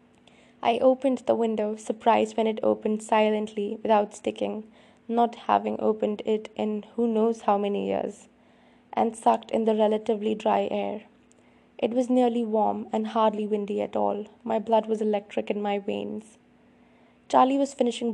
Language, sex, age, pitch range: English, female, 20-39, 210-235 Hz